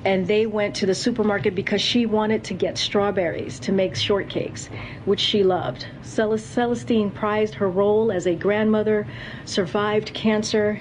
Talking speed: 150 wpm